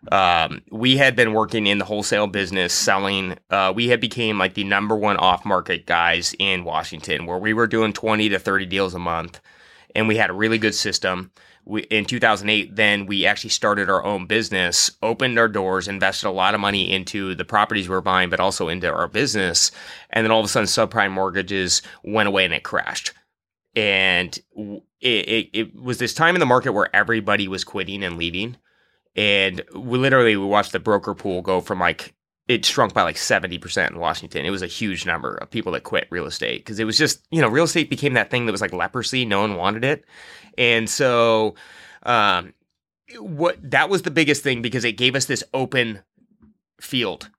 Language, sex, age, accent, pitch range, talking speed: English, male, 20-39, American, 95-120 Hz, 205 wpm